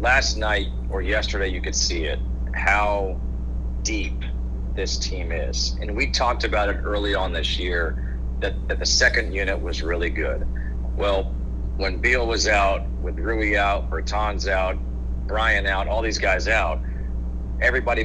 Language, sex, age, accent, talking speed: English, male, 40-59, American, 155 wpm